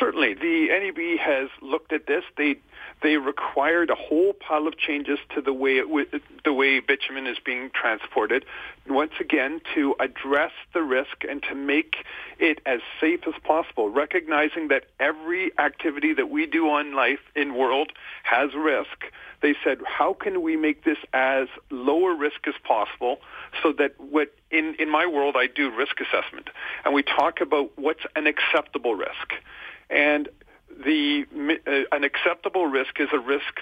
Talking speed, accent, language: 165 wpm, American, English